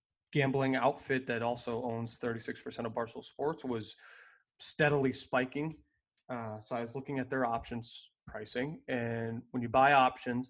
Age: 20-39